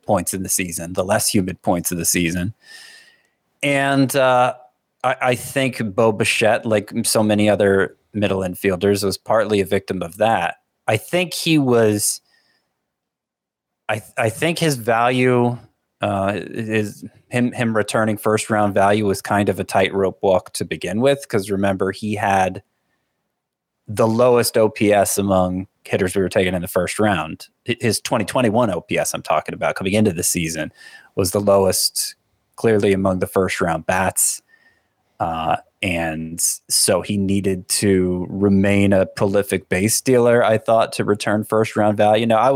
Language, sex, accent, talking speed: English, male, American, 160 wpm